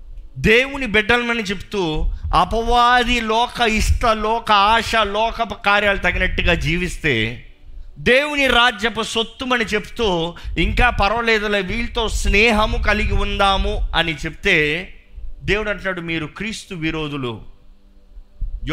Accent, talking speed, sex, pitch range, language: native, 95 wpm, male, 155-225 Hz, Telugu